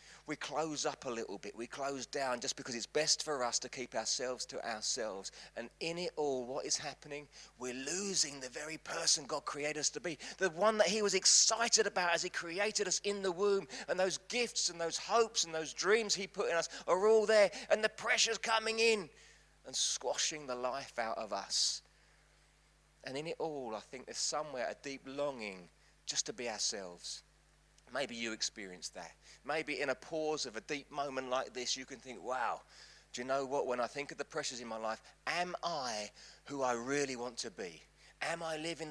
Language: English